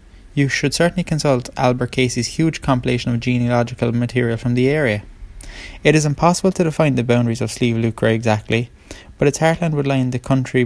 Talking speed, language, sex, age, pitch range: 180 wpm, English, male, 20-39, 115-135 Hz